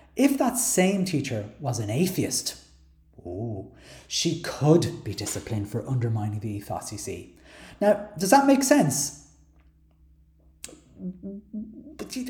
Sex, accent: male, British